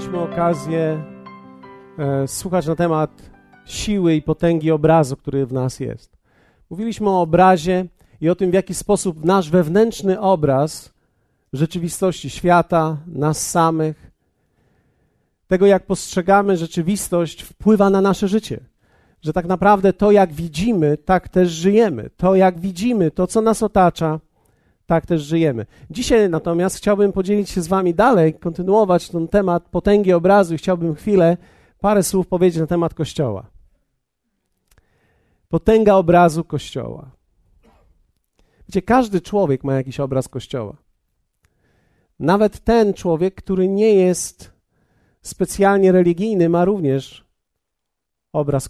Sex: male